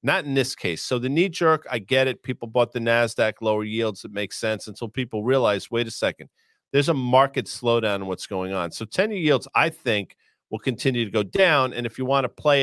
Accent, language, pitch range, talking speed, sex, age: American, English, 105-130 Hz, 235 wpm, male, 40-59